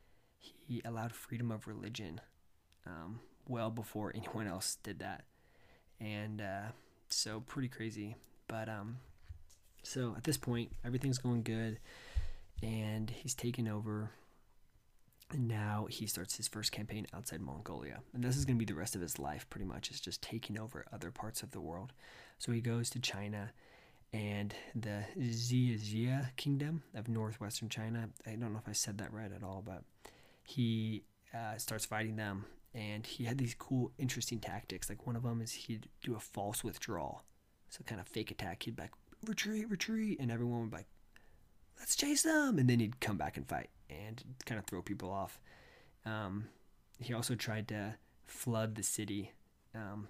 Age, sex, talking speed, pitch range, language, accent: 20-39, male, 175 wpm, 100-120 Hz, English, American